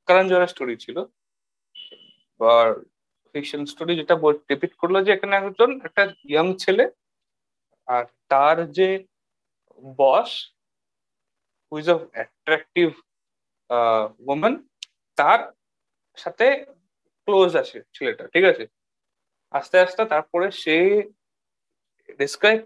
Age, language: 30-49, Bengali